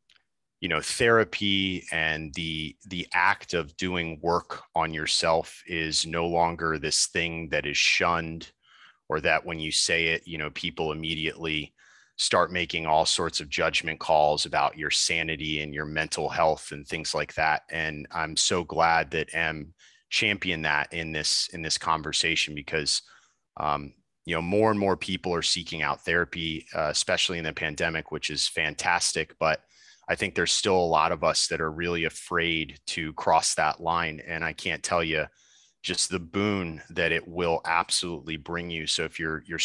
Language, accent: English, American